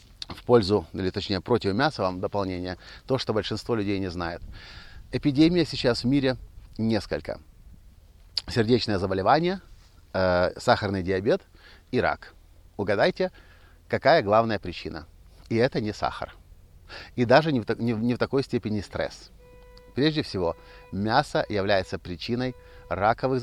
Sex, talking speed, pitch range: male, 125 wpm, 90-120 Hz